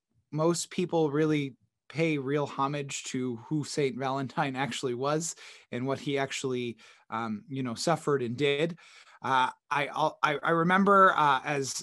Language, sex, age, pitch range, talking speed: English, male, 20-39, 135-160 Hz, 145 wpm